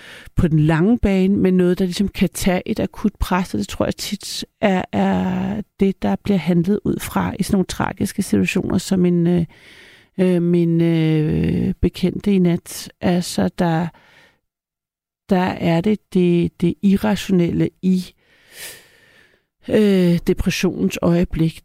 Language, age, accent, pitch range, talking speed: Danish, 60-79, native, 175-200 Hz, 140 wpm